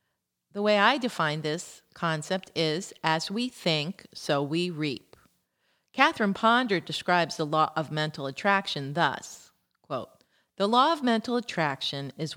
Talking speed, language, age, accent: 135 wpm, English, 40-59, American